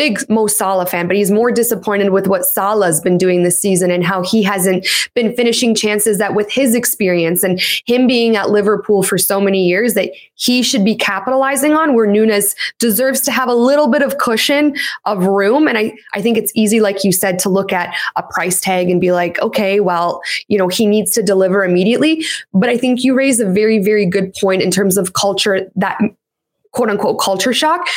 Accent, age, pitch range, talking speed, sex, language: American, 20-39, 200-260 Hz, 215 wpm, female, English